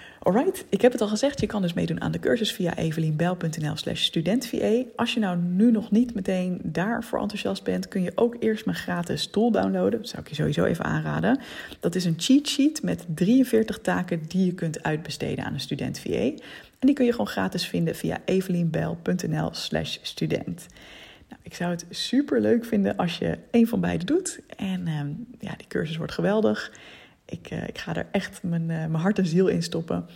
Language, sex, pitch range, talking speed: Dutch, female, 160-215 Hz, 195 wpm